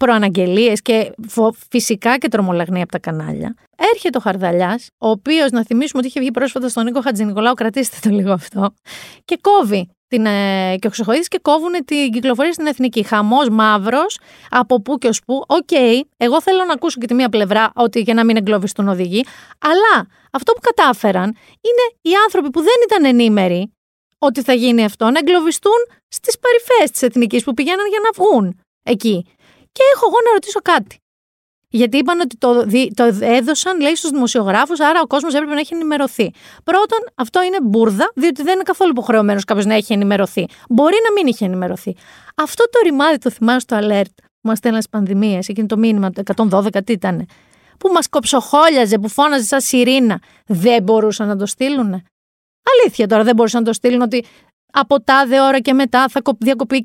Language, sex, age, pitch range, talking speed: Greek, female, 30-49, 220-305 Hz, 180 wpm